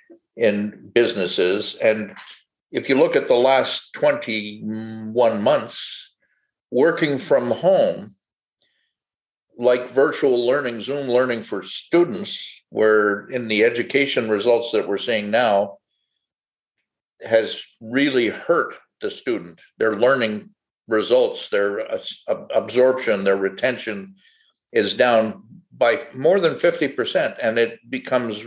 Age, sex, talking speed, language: 50-69, male, 110 wpm, English